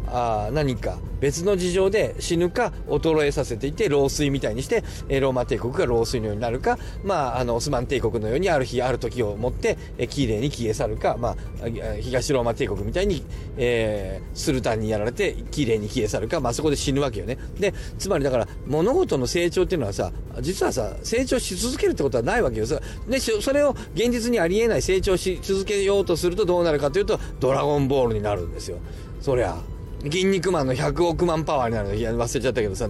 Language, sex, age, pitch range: Japanese, male, 40-59, 110-185 Hz